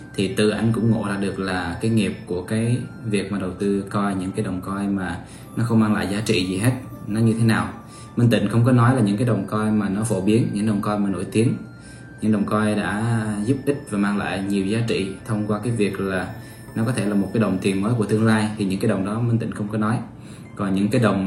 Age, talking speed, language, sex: 20-39, 275 wpm, Vietnamese, male